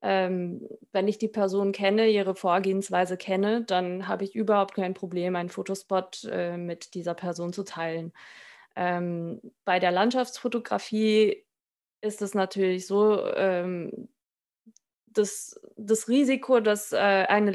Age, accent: 20-39, German